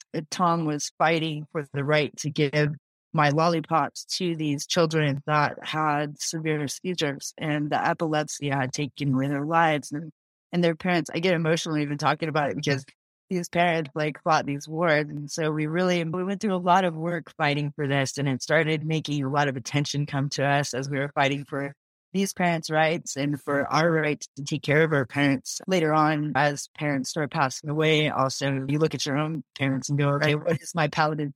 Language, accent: English, American